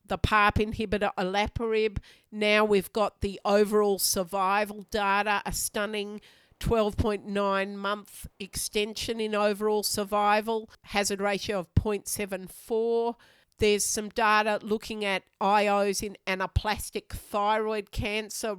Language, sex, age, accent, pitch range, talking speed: English, female, 50-69, Australian, 200-220 Hz, 105 wpm